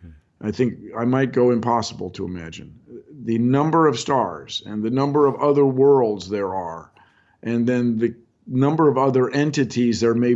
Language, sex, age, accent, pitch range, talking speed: English, male, 50-69, American, 110-140 Hz, 170 wpm